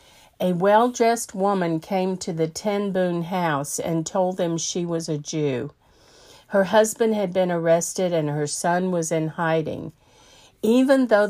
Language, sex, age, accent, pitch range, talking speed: English, female, 50-69, American, 165-215 Hz, 155 wpm